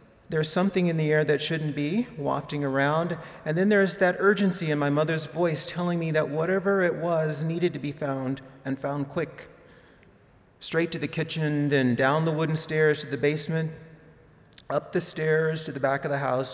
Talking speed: 190 wpm